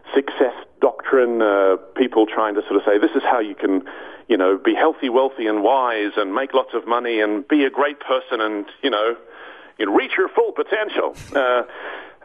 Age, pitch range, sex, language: 40-59, 105-145 Hz, male, English